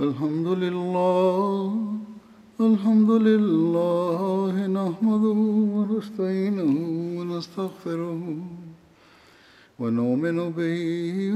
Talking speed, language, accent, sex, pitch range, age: 55 wpm, English, Indian, male, 170-215 Hz, 50-69